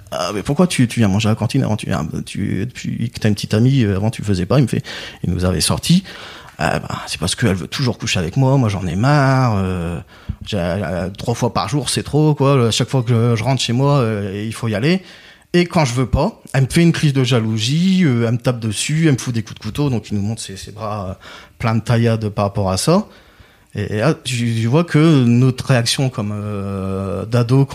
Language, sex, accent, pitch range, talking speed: French, male, French, 105-135 Hz, 265 wpm